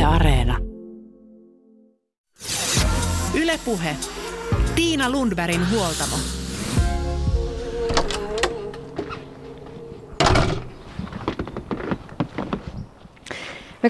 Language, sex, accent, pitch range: Finnish, female, native, 155-235 Hz